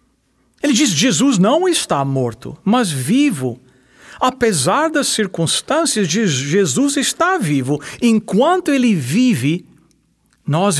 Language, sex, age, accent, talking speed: English, male, 60-79, Brazilian, 100 wpm